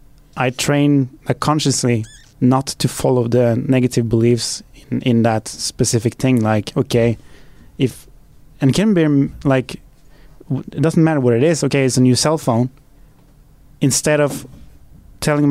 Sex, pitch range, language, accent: male, 120-140 Hz, English, Norwegian